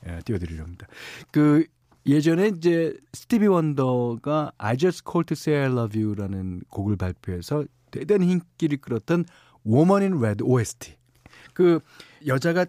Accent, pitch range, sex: native, 110-160 Hz, male